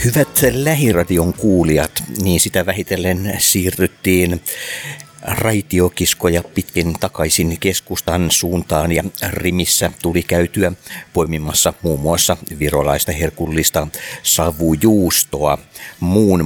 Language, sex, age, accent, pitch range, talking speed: Finnish, male, 60-79, native, 85-100 Hz, 85 wpm